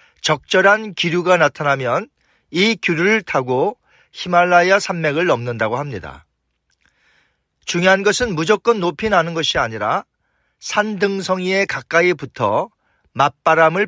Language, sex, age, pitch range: Korean, male, 40-59, 140-200 Hz